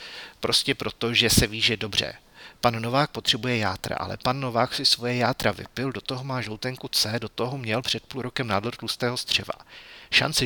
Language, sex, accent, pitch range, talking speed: Czech, male, native, 110-125 Hz, 190 wpm